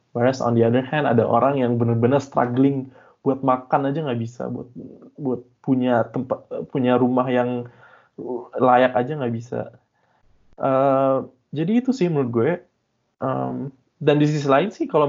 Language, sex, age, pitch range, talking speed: Indonesian, male, 20-39, 115-140 Hz, 155 wpm